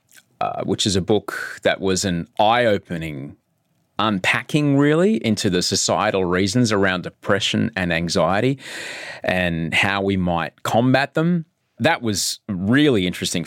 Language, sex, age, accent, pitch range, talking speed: English, male, 30-49, Australian, 95-130 Hz, 130 wpm